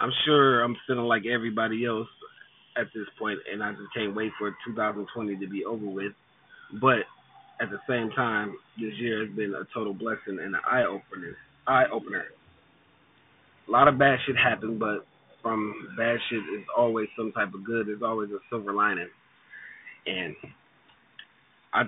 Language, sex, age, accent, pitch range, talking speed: English, male, 30-49, American, 105-125 Hz, 170 wpm